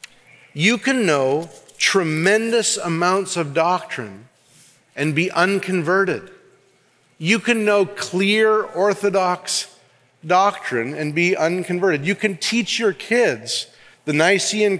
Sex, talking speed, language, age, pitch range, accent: male, 105 wpm, English, 40-59, 175-225 Hz, American